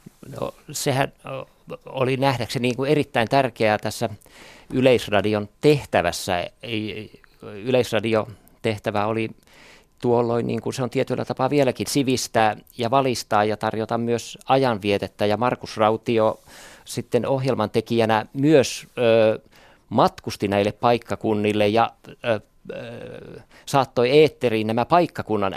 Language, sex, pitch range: Finnish, male, 105-125 Hz